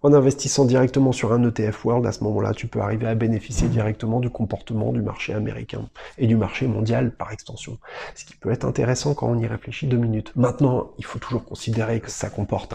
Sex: male